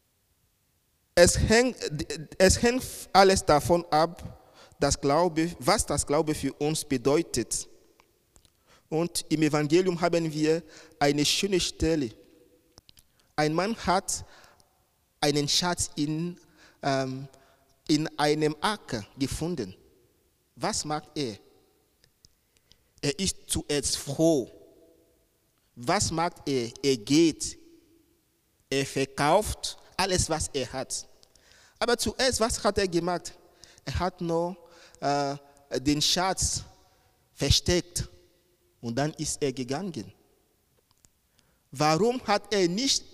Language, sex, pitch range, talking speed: German, male, 145-190 Hz, 95 wpm